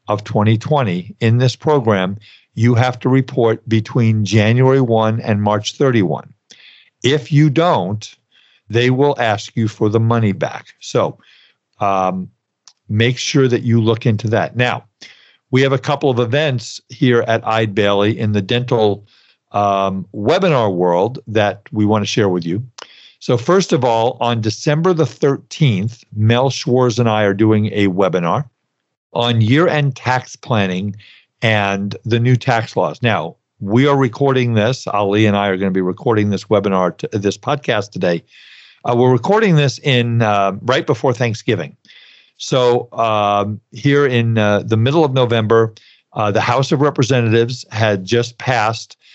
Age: 50-69